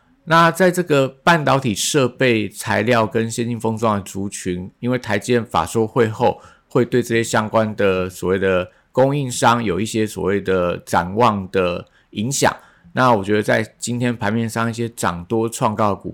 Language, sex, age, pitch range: Chinese, male, 50-69, 100-120 Hz